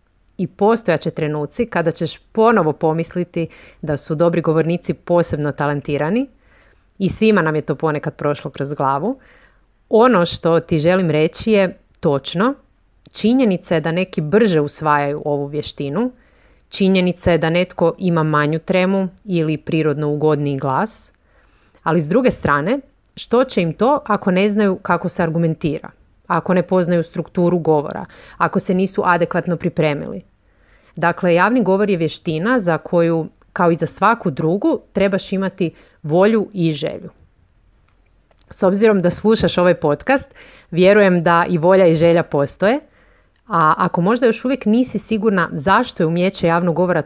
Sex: female